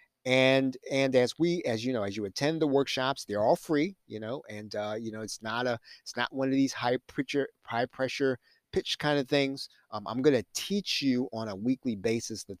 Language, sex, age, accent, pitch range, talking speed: English, male, 30-49, American, 110-135 Hz, 230 wpm